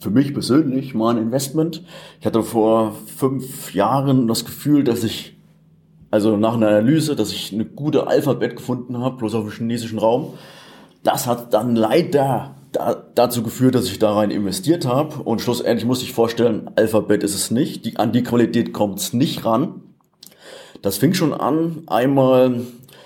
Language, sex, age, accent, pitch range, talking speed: German, male, 30-49, German, 110-140 Hz, 170 wpm